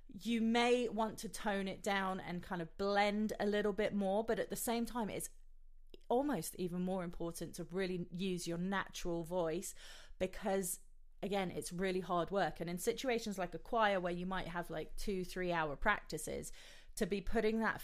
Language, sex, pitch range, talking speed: English, female, 165-205 Hz, 190 wpm